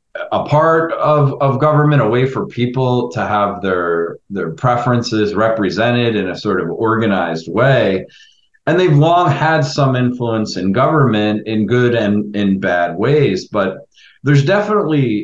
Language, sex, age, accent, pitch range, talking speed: English, male, 40-59, American, 105-140 Hz, 150 wpm